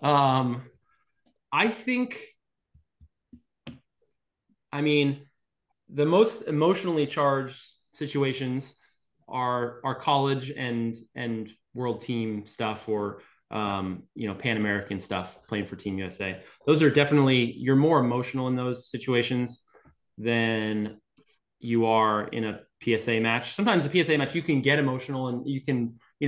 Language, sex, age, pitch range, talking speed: English, male, 20-39, 115-140 Hz, 130 wpm